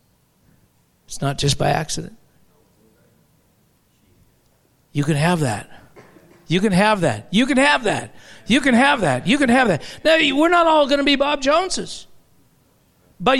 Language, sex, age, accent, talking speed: English, male, 60-79, American, 155 wpm